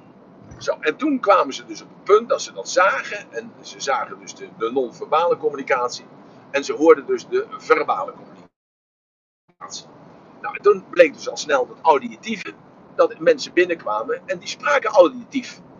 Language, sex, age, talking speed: Dutch, male, 50-69, 165 wpm